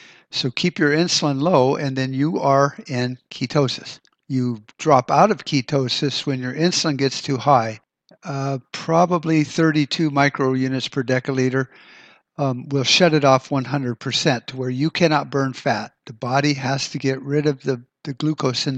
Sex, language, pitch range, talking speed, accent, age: male, English, 125-150 Hz, 165 wpm, American, 60-79